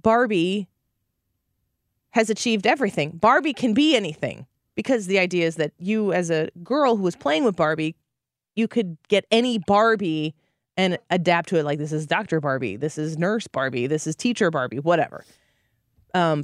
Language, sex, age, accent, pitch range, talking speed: English, female, 20-39, American, 150-220 Hz, 170 wpm